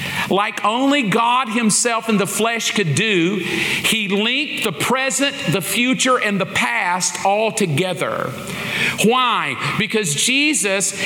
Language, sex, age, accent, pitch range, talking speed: English, male, 50-69, American, 190-245 Hz, 125 wpm